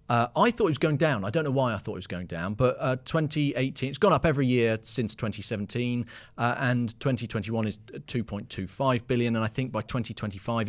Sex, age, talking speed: male, 40-59, 200 wpm